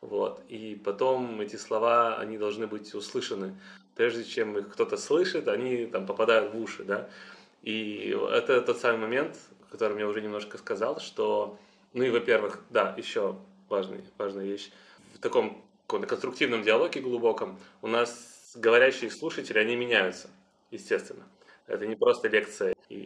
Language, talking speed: Russian, 140 wpm